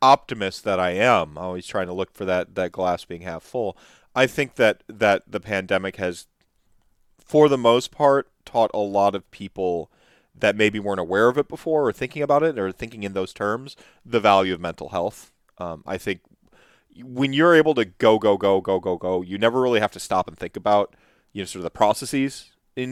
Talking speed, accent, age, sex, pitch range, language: 210 wpm, American, 30-49, male, 95-120 Hz, English